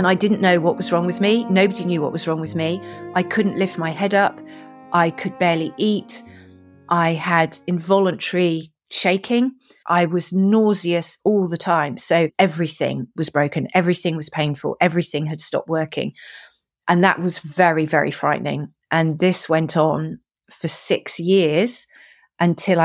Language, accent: English, British